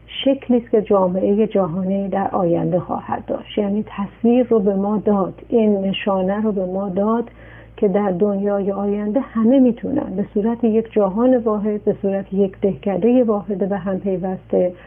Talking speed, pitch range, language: 155 wpm, 195-230 Hz, Persian